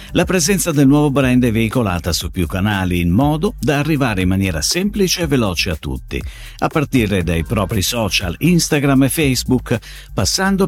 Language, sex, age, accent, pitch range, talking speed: Italian, male, 50-69, native, 90-145 Hz, 170 wpm